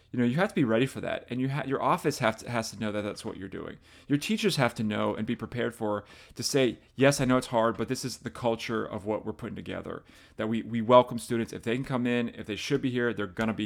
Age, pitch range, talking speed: 30-49, 110-140 Hz, 305 wpm